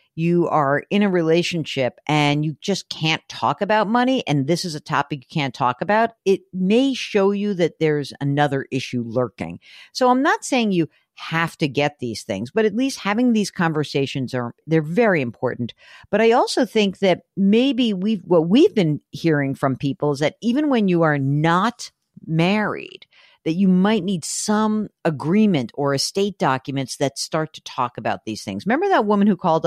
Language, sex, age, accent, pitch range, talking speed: English, female, 50-69, American, 145-210 Hz, 185 wpm